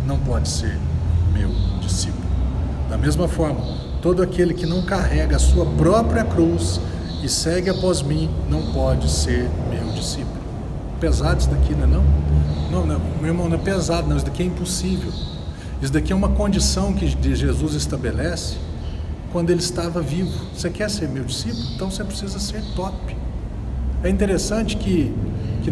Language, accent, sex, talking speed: Portuguese, Brazilian, male, 160 wpm